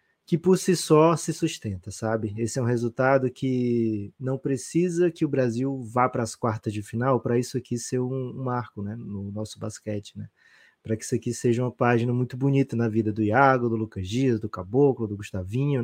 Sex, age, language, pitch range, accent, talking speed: male, 20-39, Portuguese, 115-145 Hz, Brazilian, 210 wpm